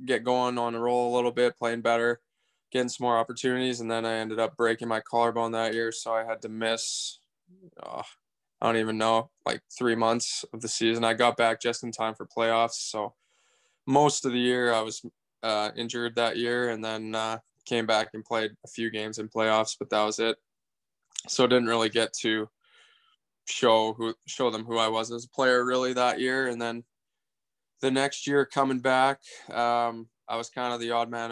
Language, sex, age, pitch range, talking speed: English, male, 20-39, 115-120 Hz, 205 wpm